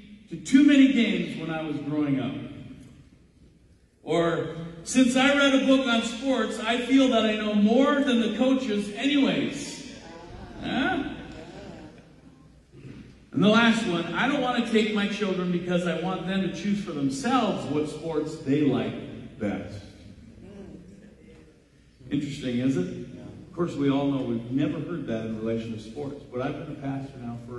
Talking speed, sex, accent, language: 160 wpm, male, American, English